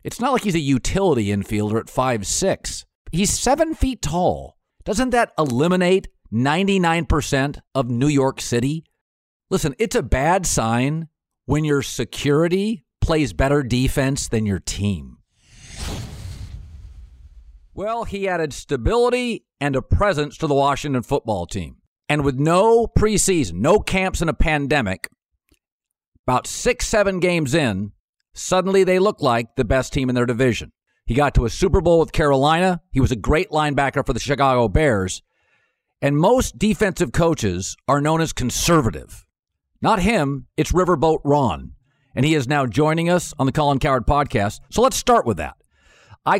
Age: 50-69